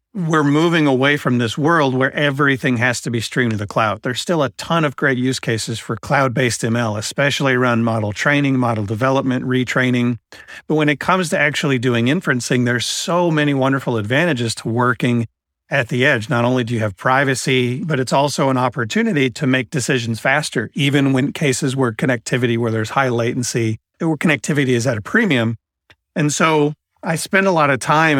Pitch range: 120-145 Hz